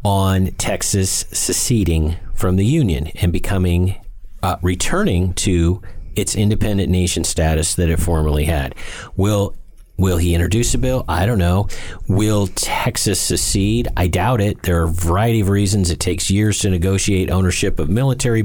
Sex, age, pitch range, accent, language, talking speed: male, 40-59, 90-110 Hz, American, English, 155 wpm